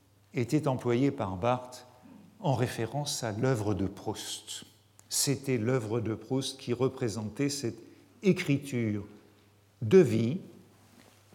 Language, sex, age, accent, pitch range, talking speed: French, male, 50-69, French, 105-140 Hz, 105 wpm